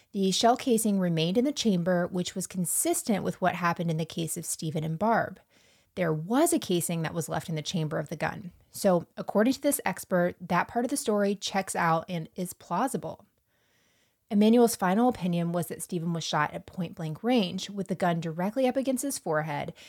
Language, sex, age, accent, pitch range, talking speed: English, female, 20-39, American, 165-220 Hz, 200 wpm